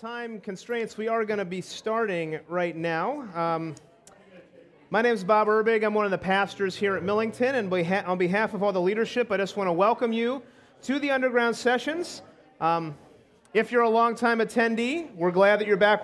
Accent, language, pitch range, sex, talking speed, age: American, English, 185-230 Hz, male, 195 wpm, 30-49